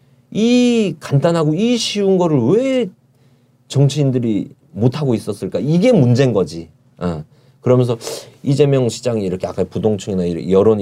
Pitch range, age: 115-155 Hz, 40-59